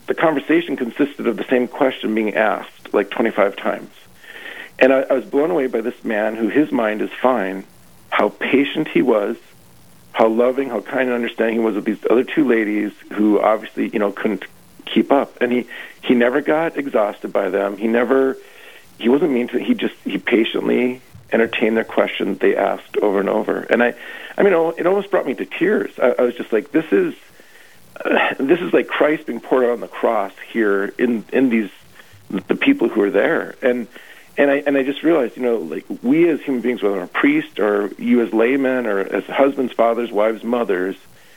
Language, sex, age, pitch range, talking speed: English, male, 40-59, 110-155 Hz, 200 wpm